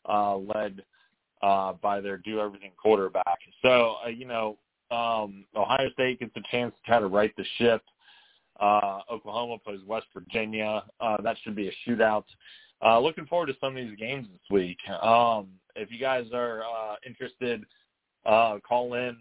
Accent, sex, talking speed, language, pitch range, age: American, male, 170 wpm, English, 100-115 Hz, 30-49